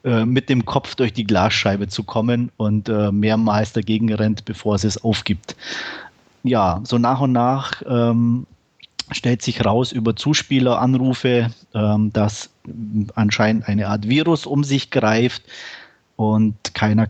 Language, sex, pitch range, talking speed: German, male, 110-125 Hz, 135 wpm